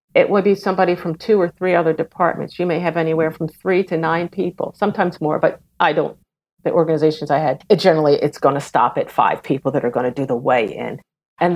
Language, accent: English, American